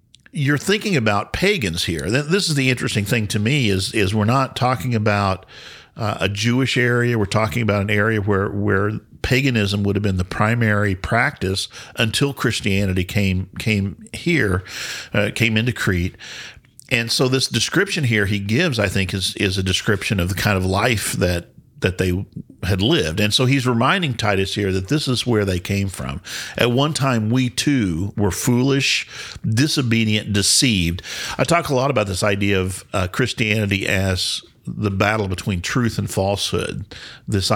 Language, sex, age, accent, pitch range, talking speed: English, male, 50-69, American, 95-125 Hz, 175 wpm